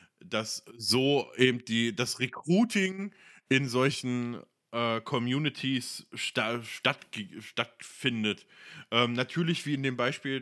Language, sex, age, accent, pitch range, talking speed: German, male, 20-39, German, 115-135 Hz, 110 wpm